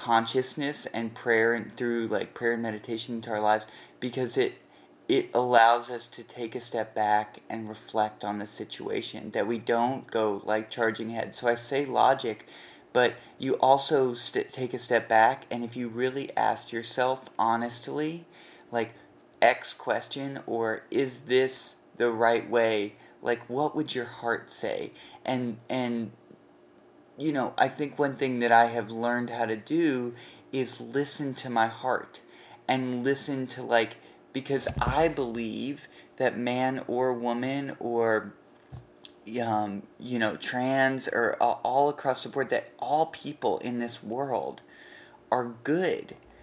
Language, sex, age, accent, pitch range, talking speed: English, male, 30-49, American, 115-130 Hz, 150 wpm